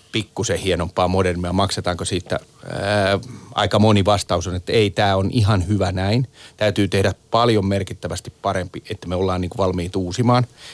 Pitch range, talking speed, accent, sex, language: 95-115 Hz, 155 wpm, native, male, Finnish